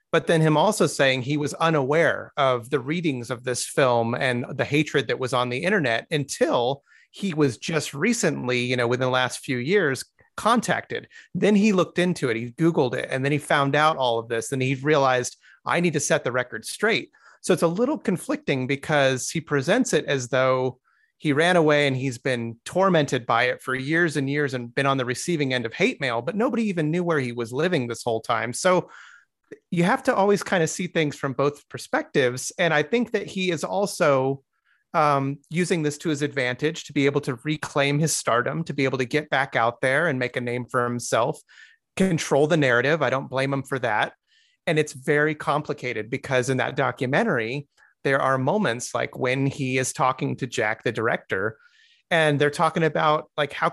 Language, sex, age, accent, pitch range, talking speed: English, male, 30-49, American, 130-165 Hz, 210 wpm